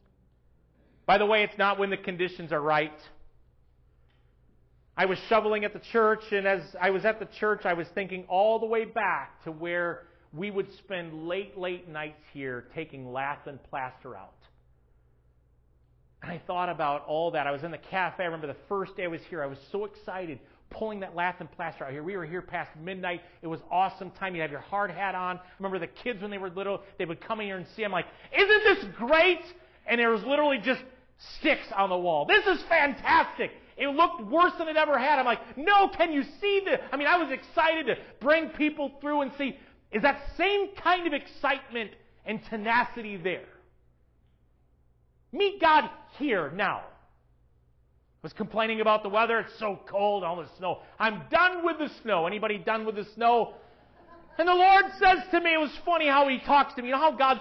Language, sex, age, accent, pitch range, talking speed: English, male, 40-59, American, 165-270 Hz, 210 wpm